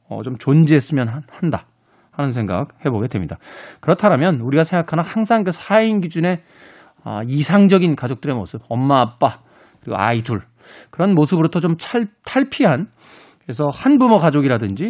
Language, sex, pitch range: Korean, male, 120-195 Hz